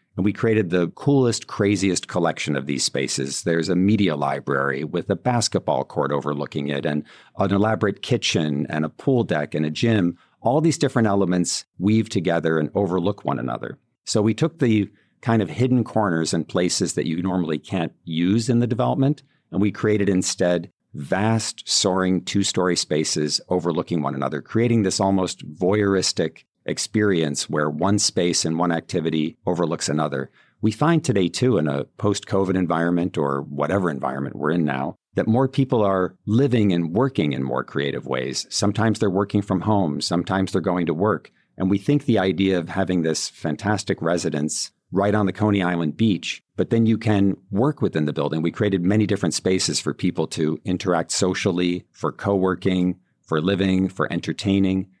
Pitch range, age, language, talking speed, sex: 85-105 Hz, 50-69, English, 170 wpm, male